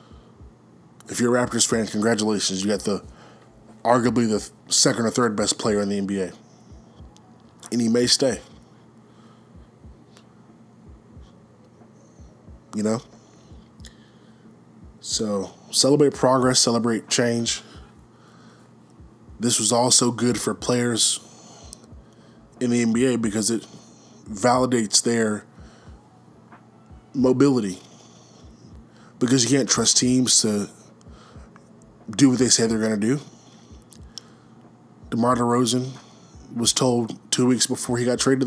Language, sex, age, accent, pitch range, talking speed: English, male, 20-39, American, 110-125 Hz, 105 wpm